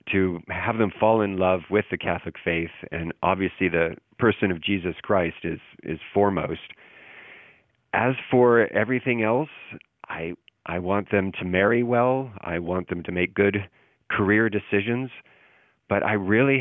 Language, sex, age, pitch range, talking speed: English, male, 40-59, 90-110 Hz, 150 wpm